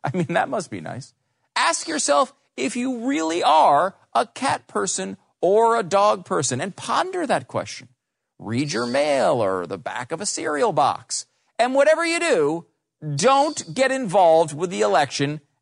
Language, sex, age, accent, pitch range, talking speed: English, male, 40-59, American, 145-235 Hz, 165 wpm